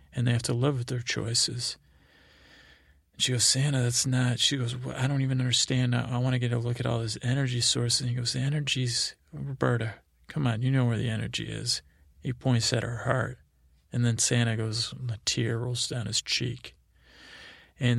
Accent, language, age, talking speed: American, English, 40-59, 205 wpm